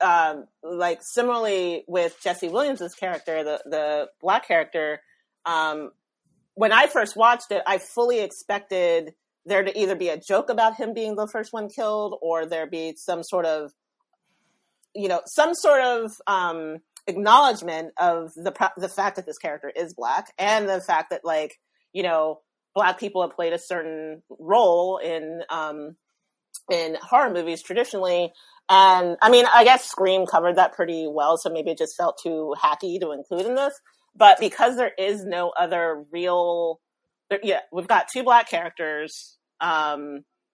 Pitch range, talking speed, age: 165-210 Hz, 165 wpm, 30-49